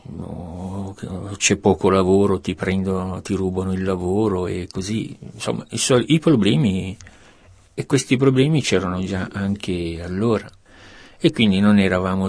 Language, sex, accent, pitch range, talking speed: Italian, male, native, 90-105 Hz, 120 wpm